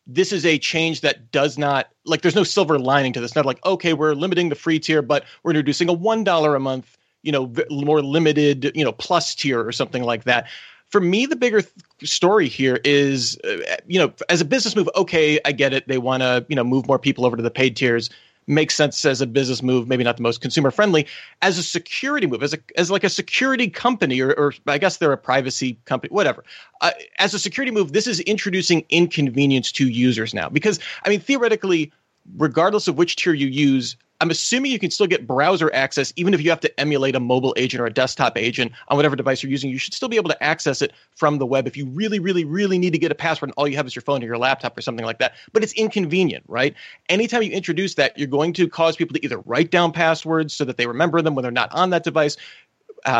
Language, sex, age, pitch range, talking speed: English, male, 30-49, 135-175 Hz, 245 wpm